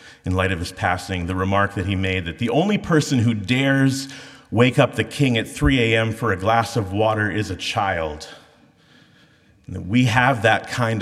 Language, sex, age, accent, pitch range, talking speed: English, male, 30-49, American, 95-135 Hz, 190 wpm